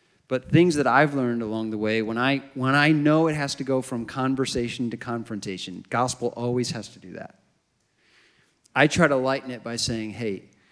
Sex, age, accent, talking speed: male, 40-59, American, 195 wpm